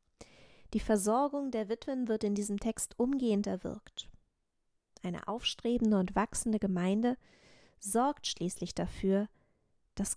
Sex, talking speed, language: female, 110 wpm, German